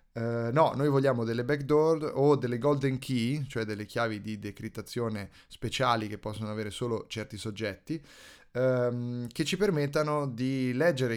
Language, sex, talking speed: Italian, male, 140 wpm